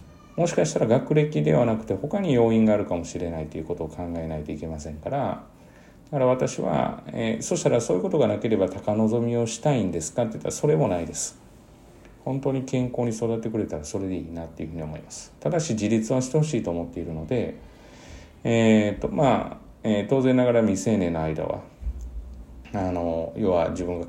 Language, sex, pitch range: Japanese, male, 85-125 Hz